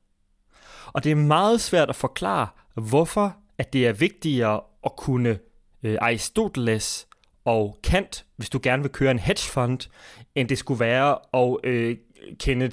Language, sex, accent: Danish, male, native